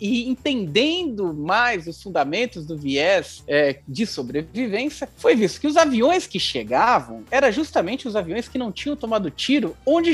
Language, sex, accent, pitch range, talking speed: Portuguese, male, Brazilian, 205-280 Hz, 160 wpm